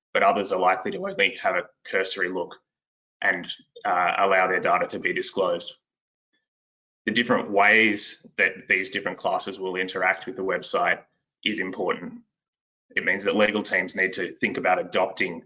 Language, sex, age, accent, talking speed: English, male, 20-39, Australian, 165 wpm